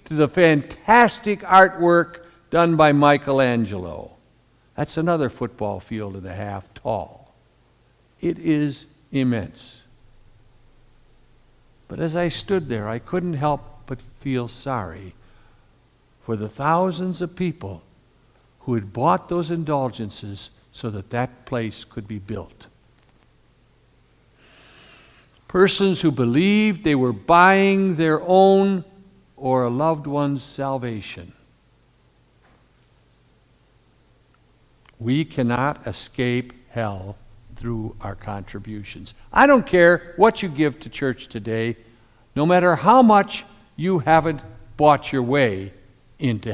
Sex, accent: male, American